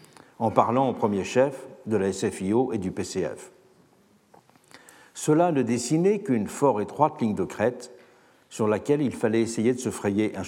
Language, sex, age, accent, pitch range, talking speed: French, male, 60-79, French, 115-155 Hz, 165 wpm